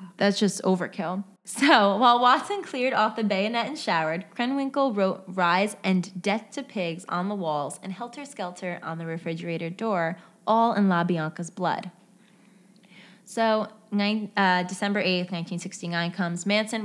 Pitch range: 175-220 Hz